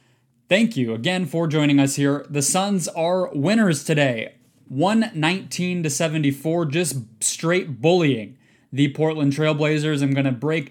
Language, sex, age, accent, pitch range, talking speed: English, male, 20-39, American, 135-165 Hz, 135 wpm